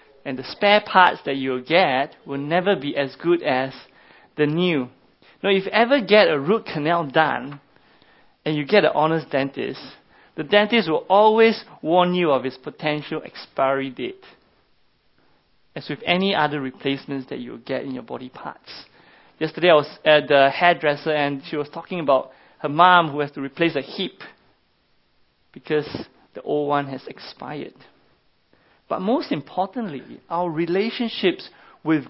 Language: English